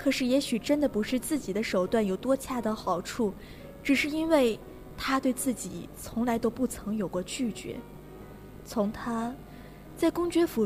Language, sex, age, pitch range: Chinese, female, 20-39, 200-265 Hz